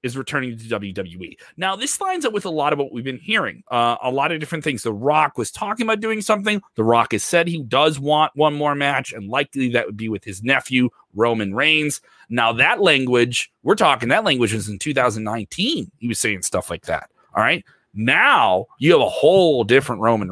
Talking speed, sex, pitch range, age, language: 220 wpm, male, 115-170 Hz, 30-49, English